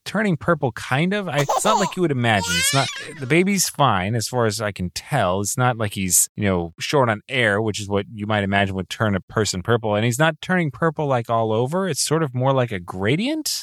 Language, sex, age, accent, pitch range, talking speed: English, male, 30-49, American, 95-135 Hz, 245 wpm